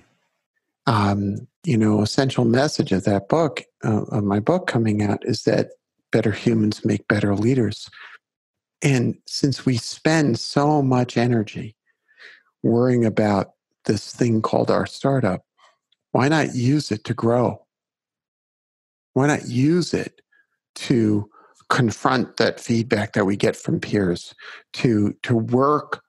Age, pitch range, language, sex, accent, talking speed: 50-69, 105-140 Hz, English, male, American, 130 wpm